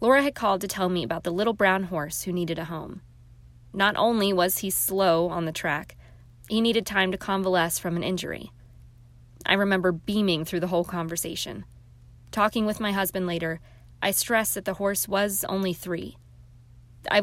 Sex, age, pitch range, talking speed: female, 20-39, 120-195 Hz, 180 wpm